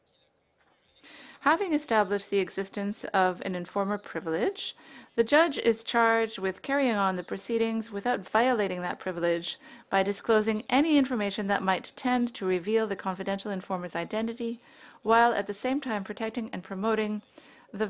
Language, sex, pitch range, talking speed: English, female, 190-255 Hz, 145 wpm